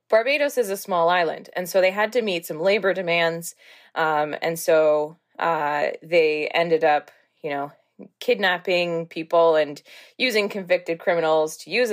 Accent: American